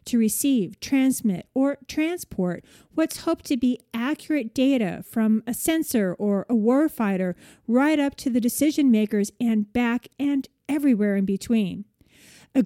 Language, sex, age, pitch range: English, female, 40-59, 215-285 Hz